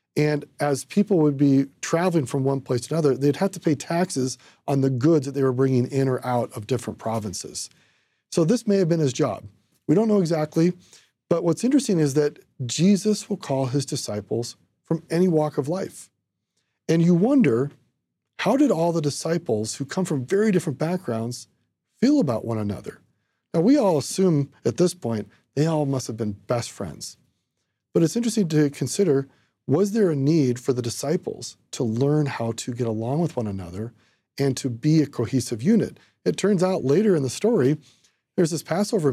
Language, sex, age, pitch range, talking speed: English, male, 40-59, 125-165 Hz, 190 wpm